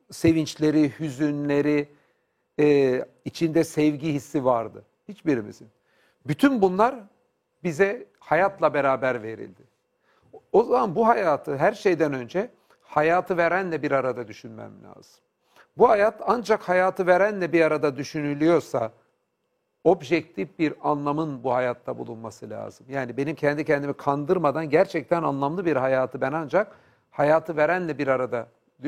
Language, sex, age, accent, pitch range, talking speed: Turkish, male, 60-79, native, 135-185 Hz, 115 wpm